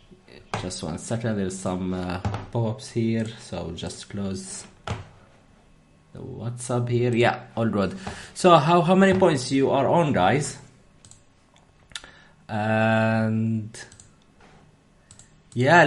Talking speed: 110 wpm